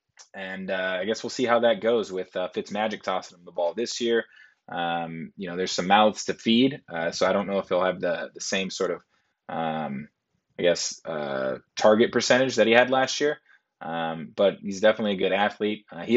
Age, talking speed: 20-39, 220 wpm